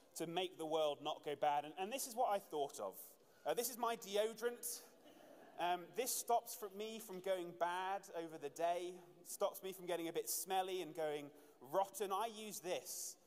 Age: 30-49